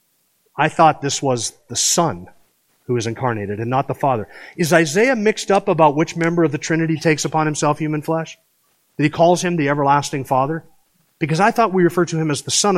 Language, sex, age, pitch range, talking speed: English, male, 40-59, 150-190 Hz, 210 wpm